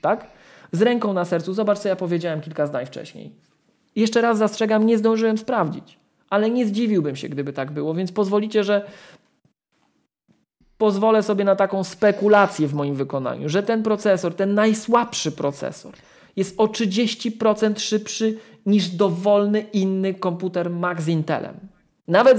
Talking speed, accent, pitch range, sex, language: 145 wpm, native, 155-205 Hz, male, Polish